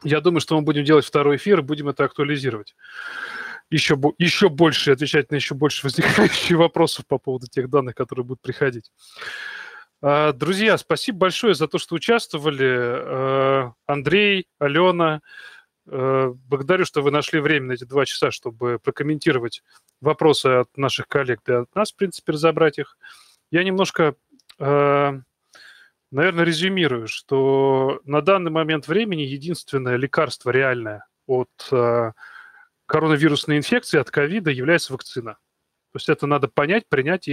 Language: Russian